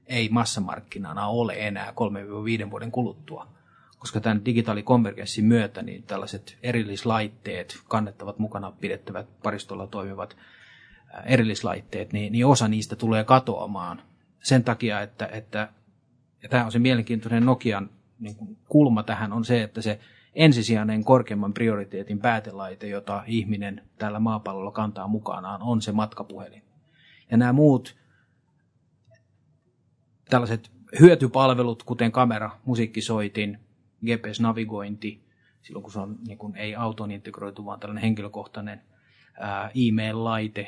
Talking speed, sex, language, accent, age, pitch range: 115 wpm, male, Finnish, native, 30-49, 105-120 Hz